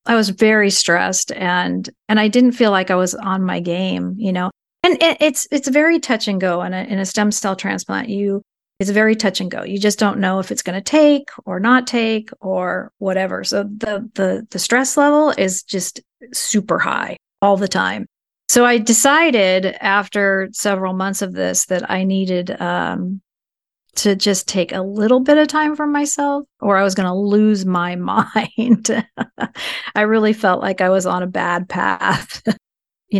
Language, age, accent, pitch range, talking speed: English, 40-59, American, 185-220 Hz, 190 wpm